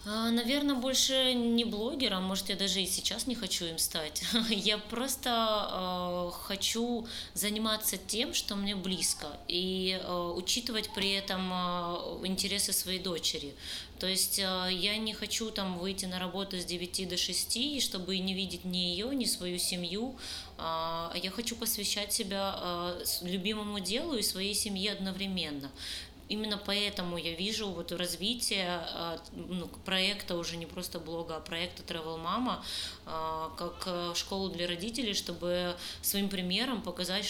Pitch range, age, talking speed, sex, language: 175-215 Hz, 20-39, 145 wpm, female, Russian